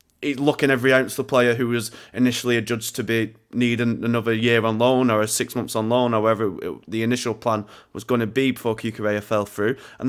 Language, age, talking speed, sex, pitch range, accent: English, 20-39, 225 wpm, male, 115-125 Hz, British